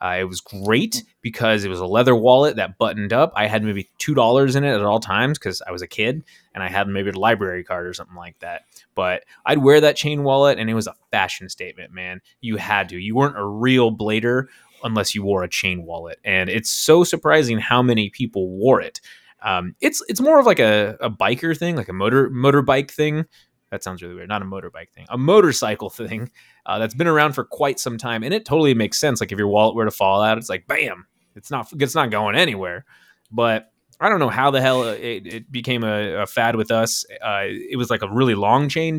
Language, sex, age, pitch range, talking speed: English, male, 20-39, 100-135 Hz, 235 wpm